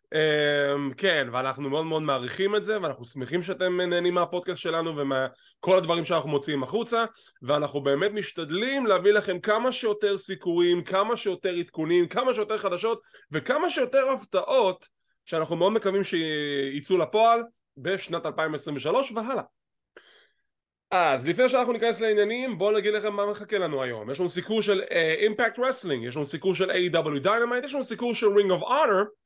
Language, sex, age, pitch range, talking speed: English, male, 20-39, 155-225 Hz, 155 wpm